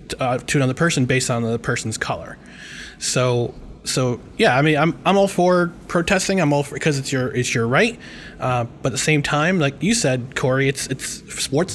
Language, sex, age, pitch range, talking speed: English, male, 20-39, 125-155 Hz, 210 wpm